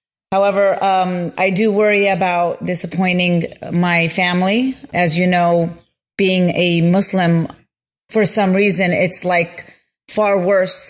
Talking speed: 120 wpm